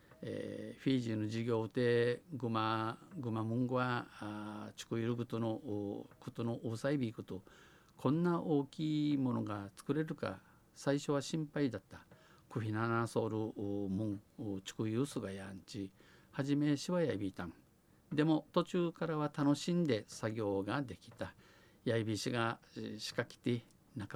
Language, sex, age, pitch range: Japanese, male, 50-69, 105-140 Hz